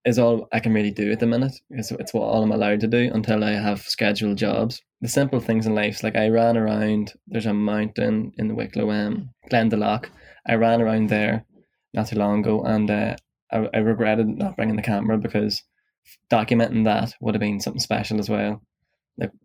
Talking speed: 205 wpm